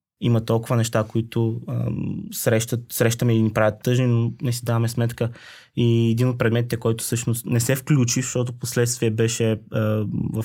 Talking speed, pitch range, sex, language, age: 165 wpm, 115-125 Hz, male, Bulgarian, 20-39